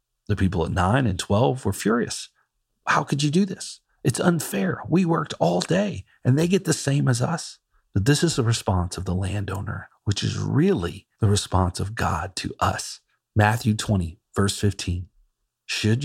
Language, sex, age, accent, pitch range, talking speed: English, male, 40-59, American, 100-125 Hz, 180 wpm